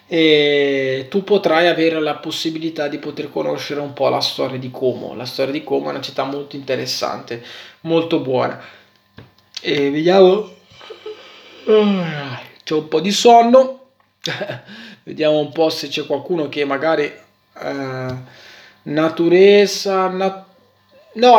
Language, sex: Italian, male